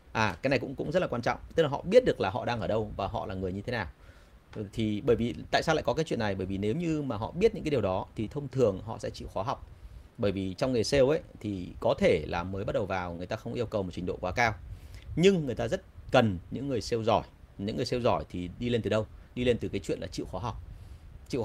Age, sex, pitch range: 30-49, male, 95-115 Hz